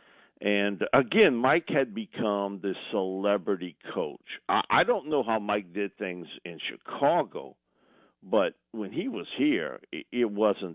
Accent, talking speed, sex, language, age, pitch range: American, 135 wpm, male, English, 50-69, 90-115 Hz